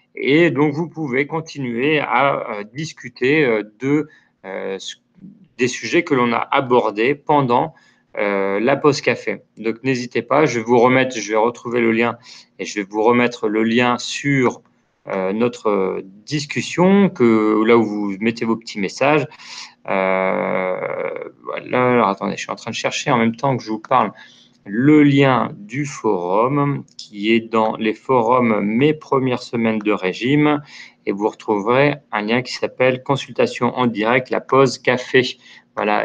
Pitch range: 110-140 Hz